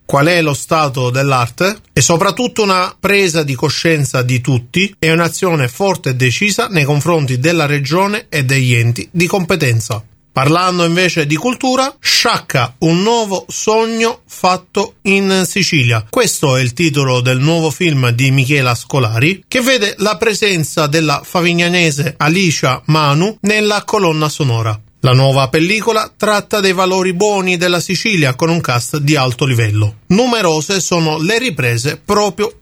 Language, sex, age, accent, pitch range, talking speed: Italian, male, 30-49, native, 130-185 Hz, 145 wpm